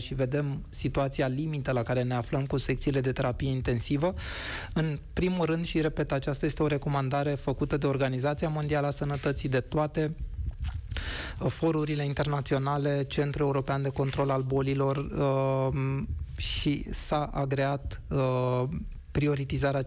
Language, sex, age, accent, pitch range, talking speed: Romanian, male, 20-39, native, 135-150 Hz, 125 wpm